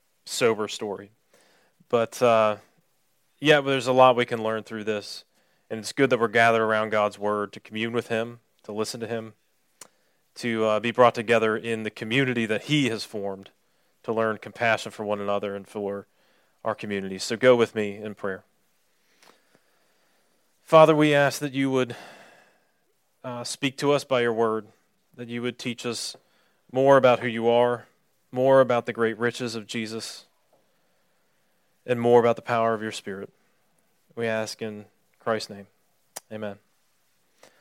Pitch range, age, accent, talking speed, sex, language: 110-135 Hz, 30-49, American, 165 wpm, male, English